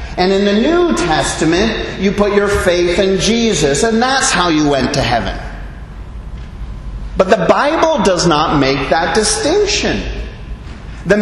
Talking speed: 145 wpm